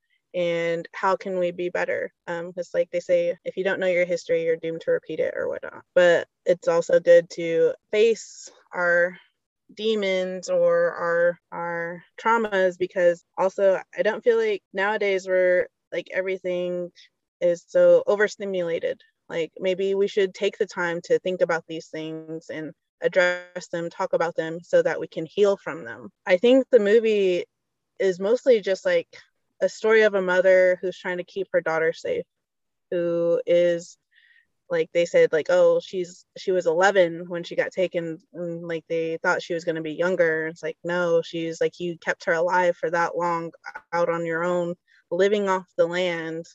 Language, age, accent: English, 20-39, American